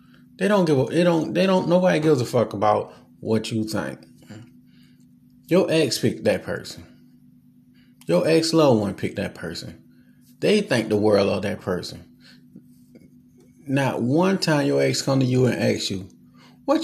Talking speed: 170 wpm